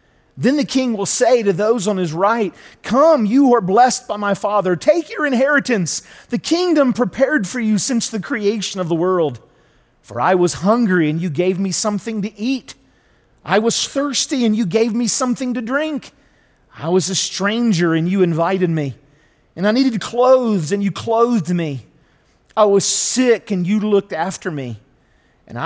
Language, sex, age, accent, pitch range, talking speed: English, male, 40-59, American, 160-230 Hz, 180 wpm